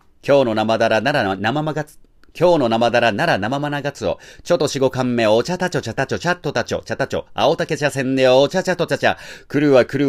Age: 40-59